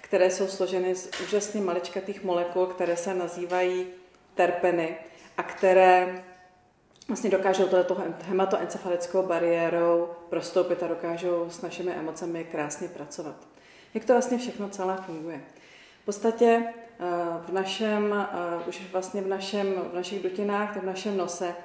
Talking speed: 130 wpm